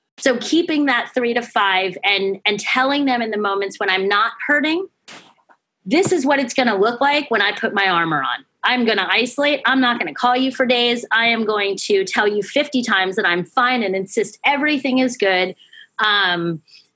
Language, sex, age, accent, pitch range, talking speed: English, female, 30-49, American, 185-250 Hz, 210 wpm